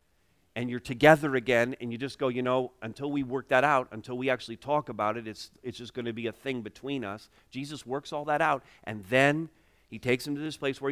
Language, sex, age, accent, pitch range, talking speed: English, male, 40-59, American, 95-135 Hz, 245 wpm